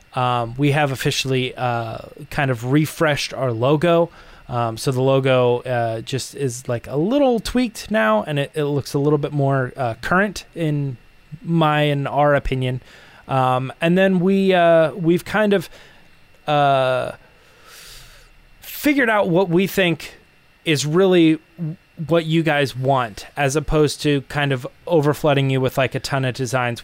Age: 20-39